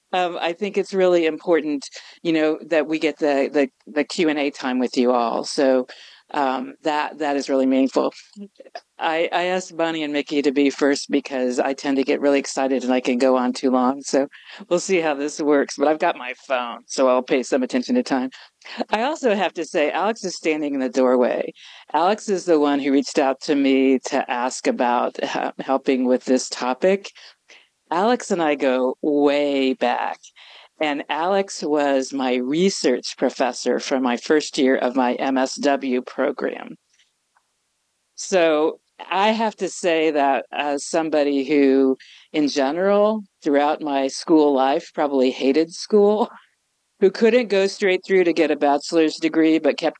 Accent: American